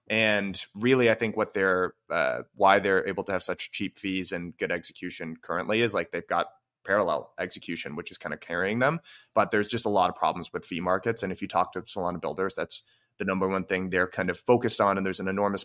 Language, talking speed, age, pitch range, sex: English, 240 wpm, 20-39, 95-120 Hz, male